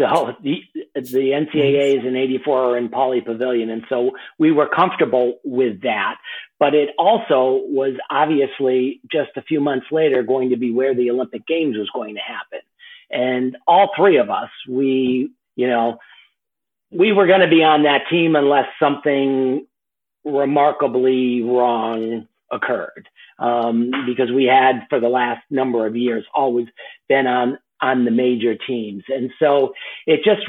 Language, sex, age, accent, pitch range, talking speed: English, male, 50-69, American, 125-155 Hz, 155 wpm